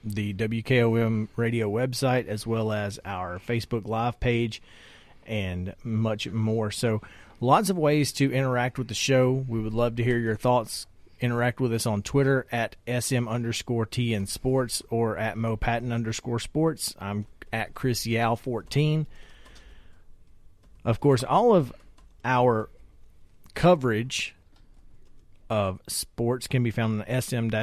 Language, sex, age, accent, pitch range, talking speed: English, male, 40-59, American, 105-125 Hz, 135 wpm